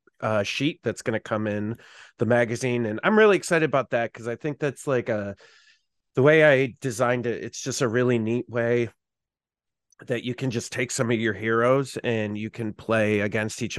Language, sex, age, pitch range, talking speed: English, male, 30-49, 105-125 Hz, 205 wpm